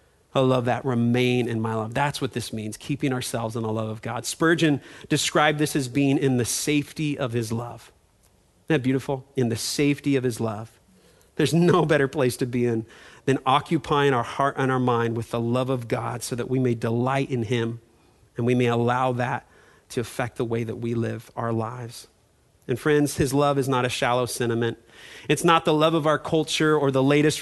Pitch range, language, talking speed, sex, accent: 120-145 Hz, English, 210 wpm, male, American